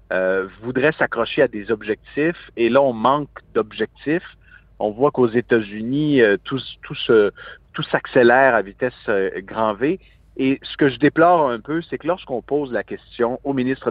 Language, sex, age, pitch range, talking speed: French, male, 50-69, 110-140 Hz, 175 wpm